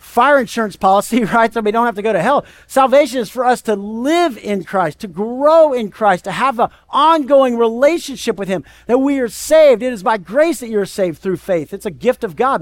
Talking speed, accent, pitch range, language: 235 wpm, American, 190-275 Hz, English